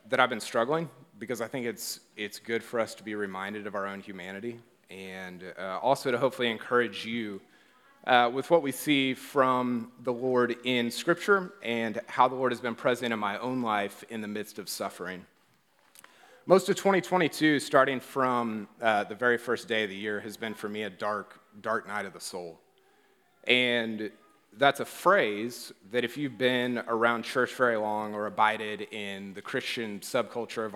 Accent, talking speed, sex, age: American, 185 wpm, male, 30-49